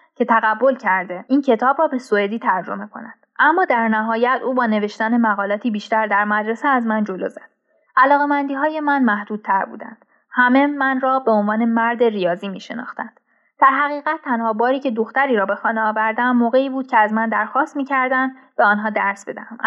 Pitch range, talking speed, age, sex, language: 210-265 Hz, 185 wpm, 10-29, female, Persian